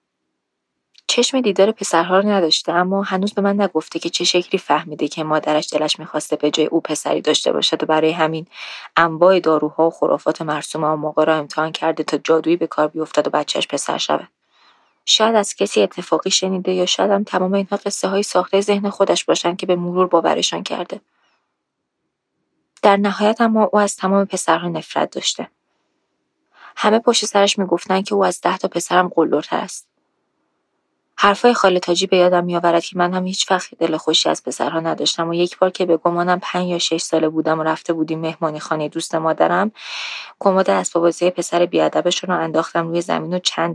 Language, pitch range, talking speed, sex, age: Persian, 160-190 Hz, 180 wpm, female, 20-39